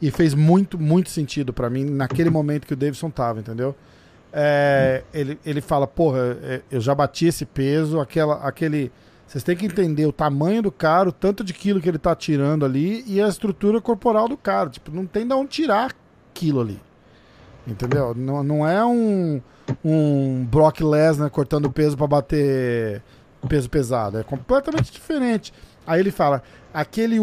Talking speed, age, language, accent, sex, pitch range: 175 wpm, 40-59, Portuguese, Brazilian, male, 140-195 Hz